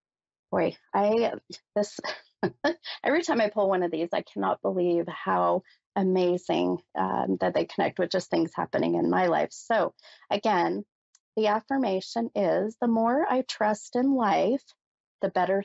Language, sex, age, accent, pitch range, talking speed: English, female, 30-49, American, 175-220 Hz, 150 wpm